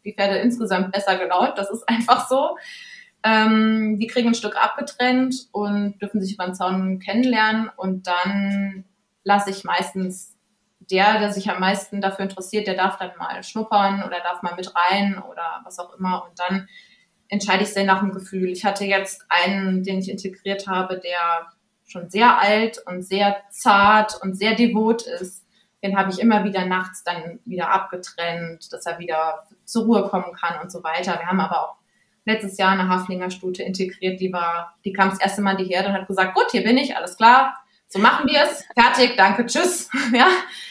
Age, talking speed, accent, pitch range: 20-39, 190 wpm, German, 190-230 Hz